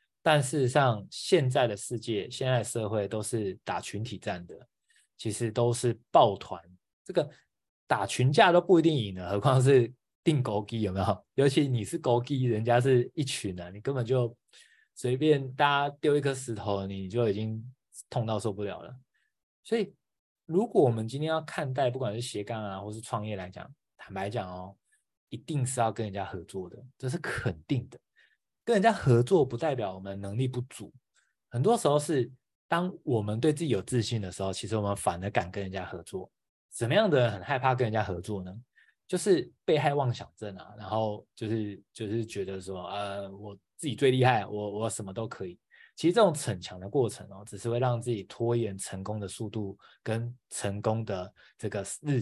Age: 20-39